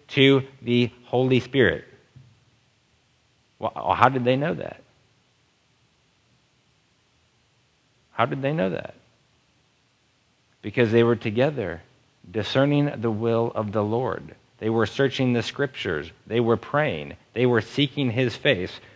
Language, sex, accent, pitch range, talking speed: English, male, American, 115-140 Hz, 120 wpm